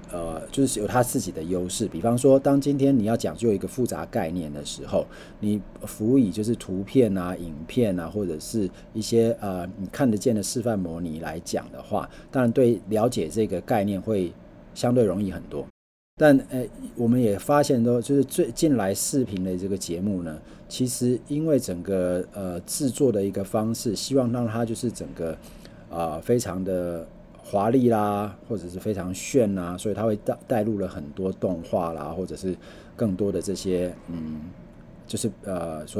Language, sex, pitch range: Chinese, male, 90-115 Hz